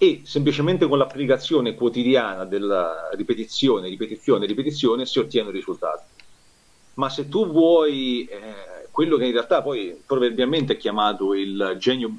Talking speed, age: 140 wpm, 40-59